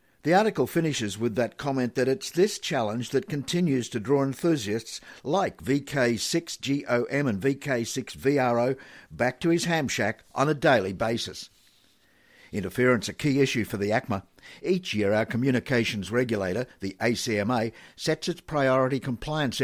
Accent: Australian